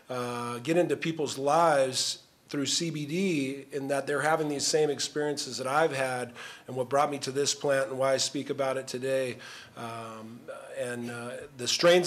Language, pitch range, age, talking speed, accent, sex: English, 130-155 Hz, 40-59, 180 wpm, American, male